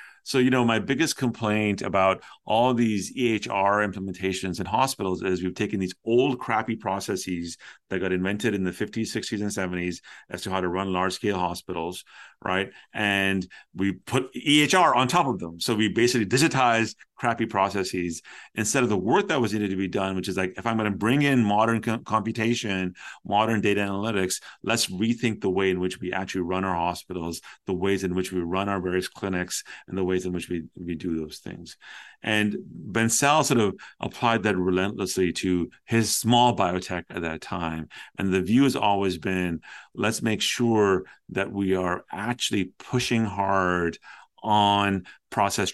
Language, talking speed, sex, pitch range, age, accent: English, 180 wpm, male, 90-115 Hz, 40-59, American